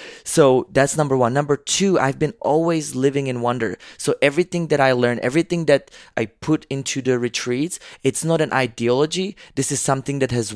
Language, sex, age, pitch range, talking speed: English, male, 20-39, 115-140 Hz, 190 wpm